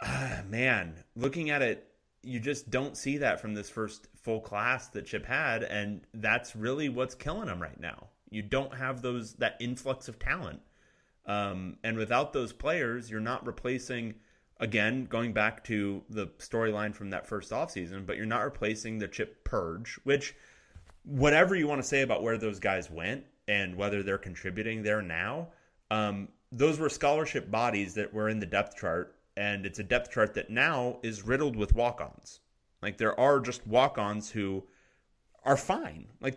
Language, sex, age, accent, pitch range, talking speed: English, male, 30-49, American, 100-125 Hz, 175 wpm